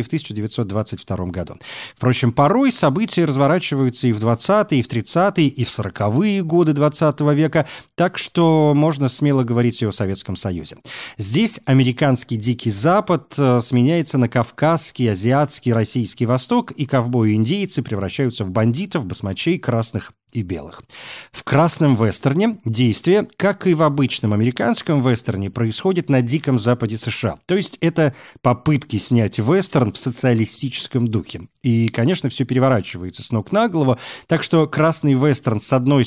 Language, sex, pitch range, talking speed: Russian, male, 115-155 Hz, 140 wpm